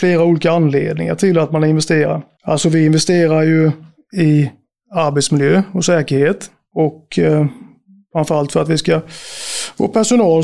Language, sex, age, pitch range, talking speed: Swedish, male, 30-49, 155-175 Hz, 140 wpm